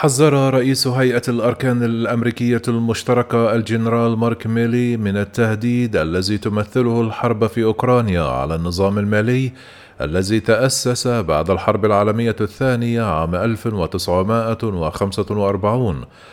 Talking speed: 100 wpm